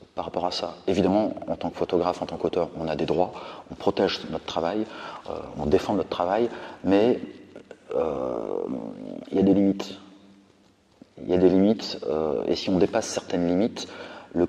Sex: male